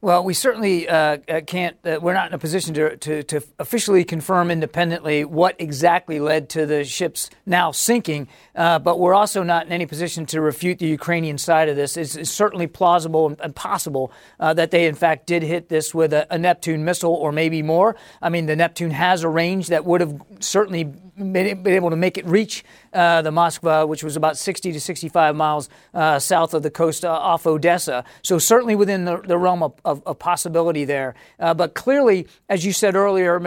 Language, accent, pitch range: English, American, 160-195 Hz